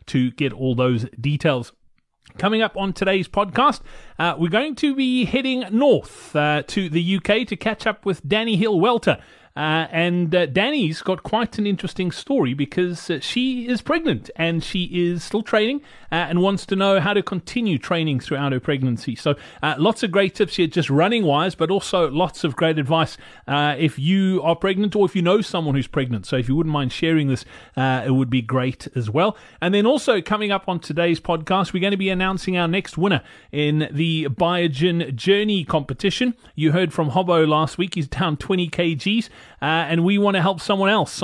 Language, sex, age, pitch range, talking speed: English, male, 30-49, 150-195 Hz, 200 wpm